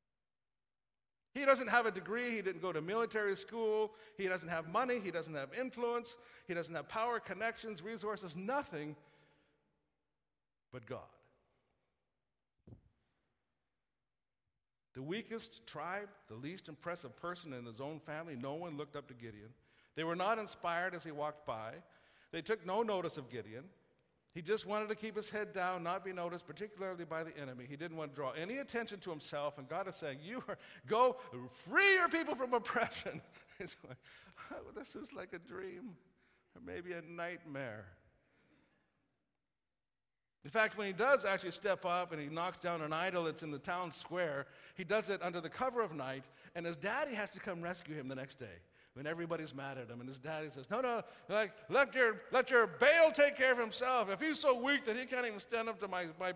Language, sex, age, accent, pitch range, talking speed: English, male, 50-69, American, 155-230 Hz, 190 wpm